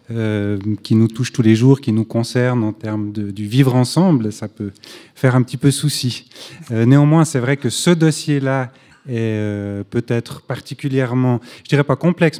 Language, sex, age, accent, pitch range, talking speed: French, male, 30-49, French, 110-130 Hz, 190 wpm